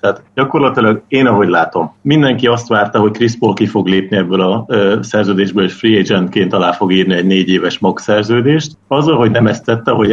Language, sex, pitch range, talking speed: Hungarian, male, 95-110 Hz, 200 wpm